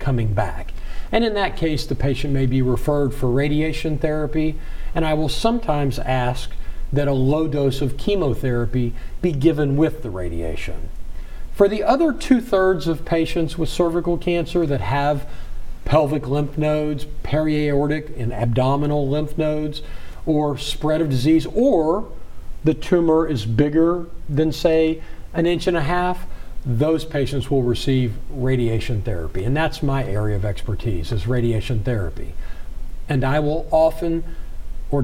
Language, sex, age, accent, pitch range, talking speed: English, male, 50-69, American, 125-160 Hz, 145 wpm